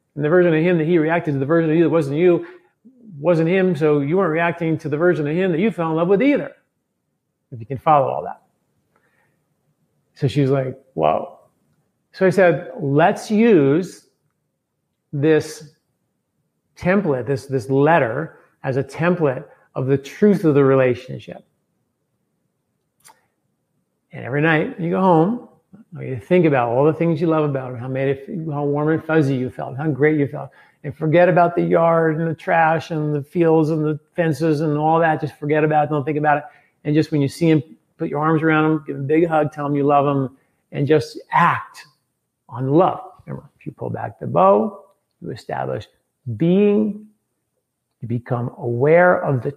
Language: English